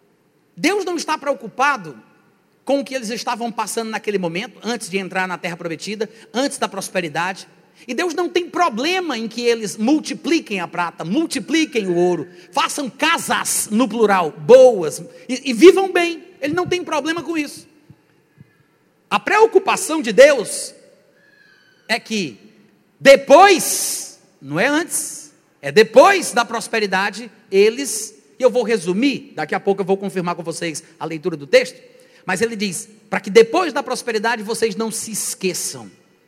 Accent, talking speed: Brazilian, 155 wpm